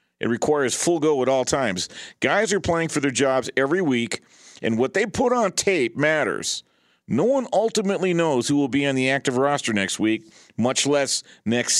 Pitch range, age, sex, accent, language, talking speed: 120-180 Hz, 50-69, male, American, English, 195 wpm